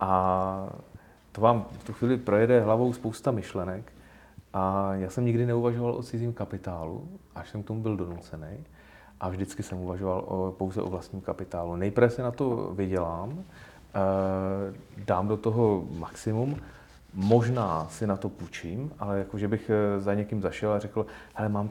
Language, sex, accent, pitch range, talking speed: Czech, male, native, 95-110 Hz, 155 wpm